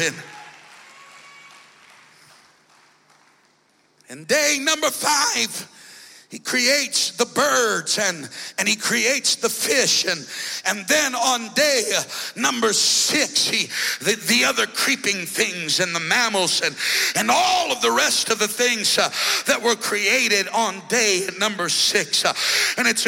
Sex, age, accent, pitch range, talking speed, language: male, 60-79, American, 215-270 Hz, 125 wpm, English